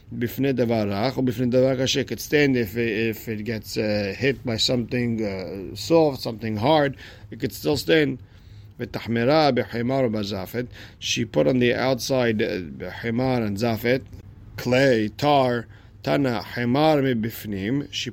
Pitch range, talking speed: 110-135 Hz, 105 wpm